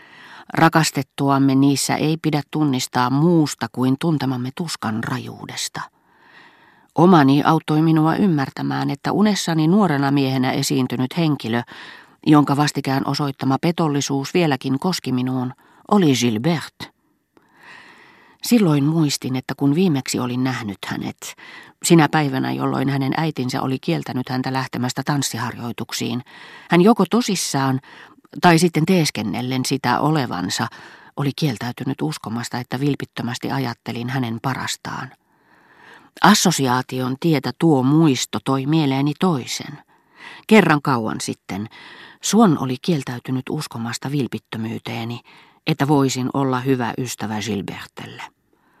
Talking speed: 105 wpm